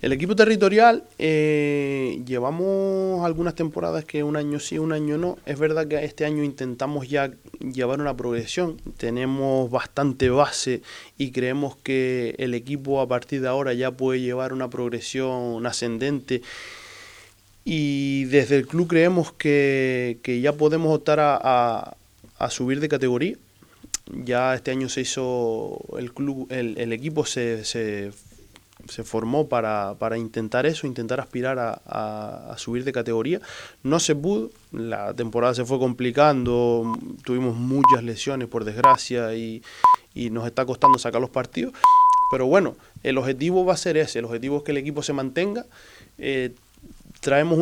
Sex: male